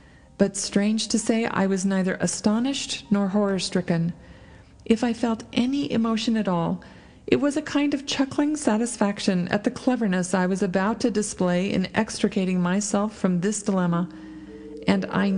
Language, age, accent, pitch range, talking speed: English, 40-59, American, 175-225 Hz, 155 wpm